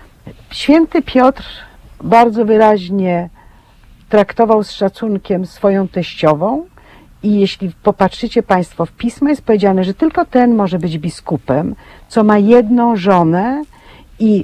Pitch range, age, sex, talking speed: 190-250 Hz, 50-69, female, 115 wpm